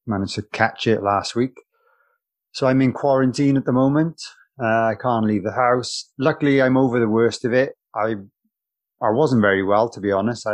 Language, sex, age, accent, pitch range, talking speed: English, male, 30-49, British, 105-135 Hz, 200 wpm